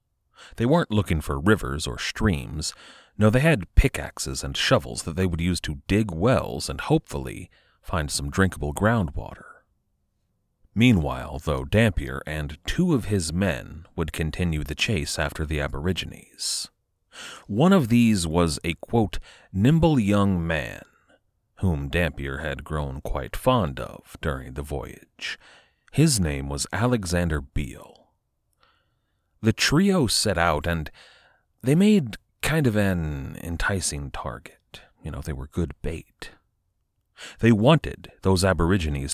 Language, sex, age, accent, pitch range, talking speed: English, male, 30-49, American, 75-105 Hz, 130 wpm